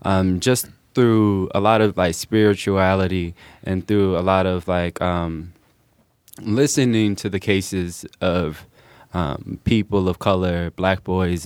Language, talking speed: English, 135 wpm